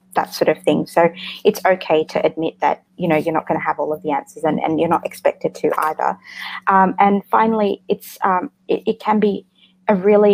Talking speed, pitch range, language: 225 wpm, 165-190 Hz, English